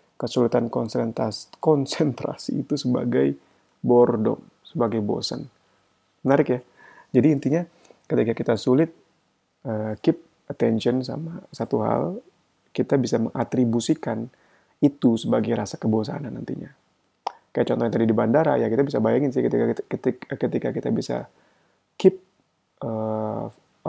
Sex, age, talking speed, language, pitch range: male, 30-49, 115 wpm, Indonesian, 115-155 Hz